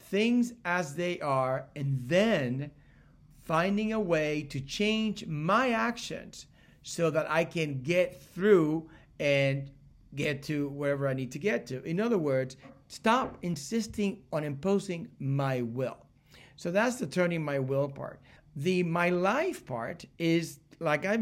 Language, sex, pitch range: English, male, 145-200 Hz